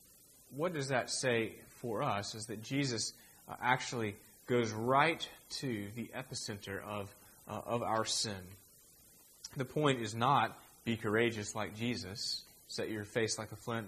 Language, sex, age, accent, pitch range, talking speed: English, male, 30-49, American, 105-125 Hz, 145 wpm